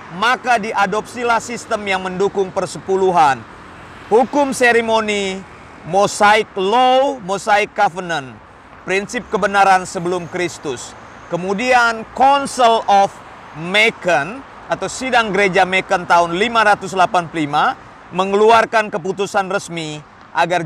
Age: 40-59